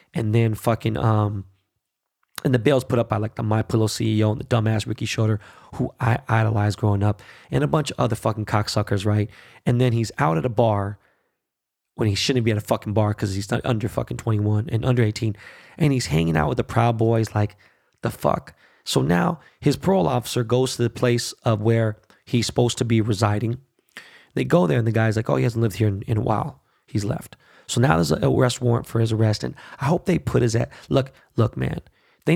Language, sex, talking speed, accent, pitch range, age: English, male, 225 wpm, American, 105-125 Hz, 20-39